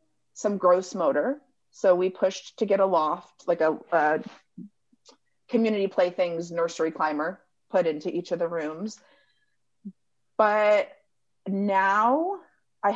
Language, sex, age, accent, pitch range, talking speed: English, female, 30-49, American, 180-260 Hz, 125 wpm